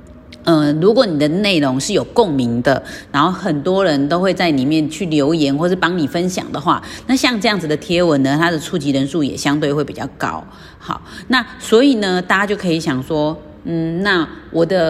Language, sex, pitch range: Chinese, female, 150-200 Hz